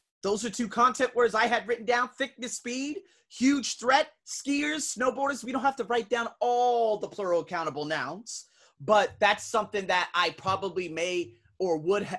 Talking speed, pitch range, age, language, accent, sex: 170 wpm, 160-245 Hz, 30-49, English, American, male